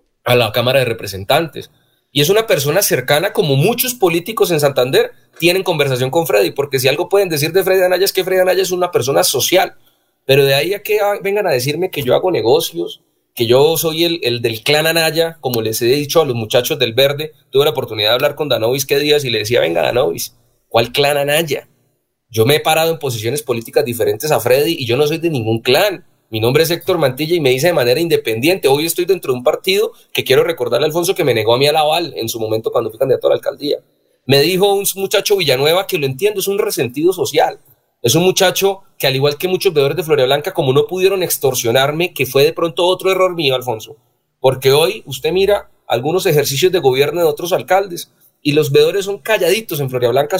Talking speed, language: 225 wpm, Spanish